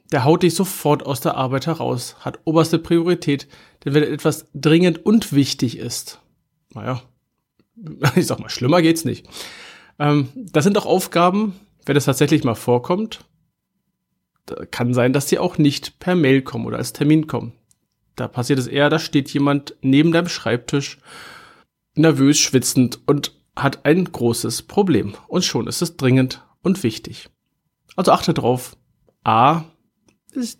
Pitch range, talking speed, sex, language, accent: 135-175 Hz, 155 wpm, male, German, German